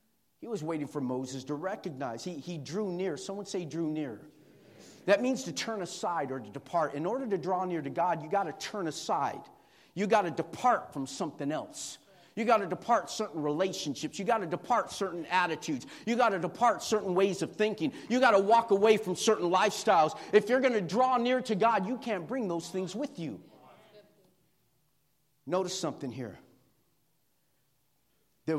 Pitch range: 150-195 Hz